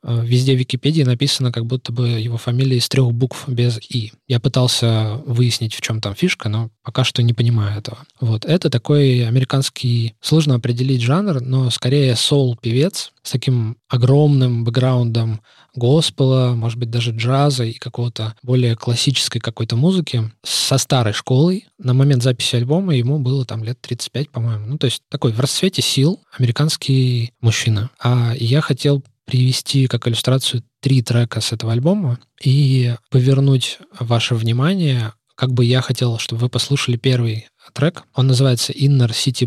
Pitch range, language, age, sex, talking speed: 120-135 Hz, Russian, 20-39, male, 155 wpm